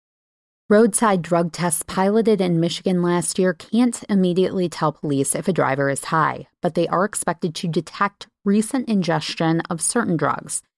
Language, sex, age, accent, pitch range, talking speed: English, female, 30-49, American, 170-210 Hz, 155 wpm